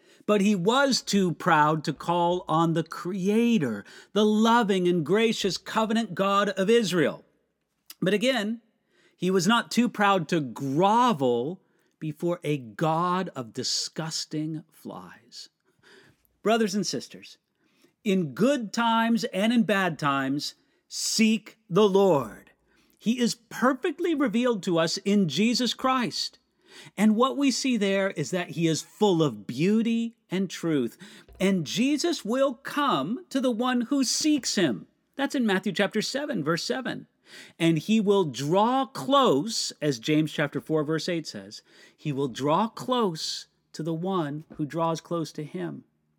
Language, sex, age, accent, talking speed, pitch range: English, male, 50-69, American, 145 wpm, 160-230 Hz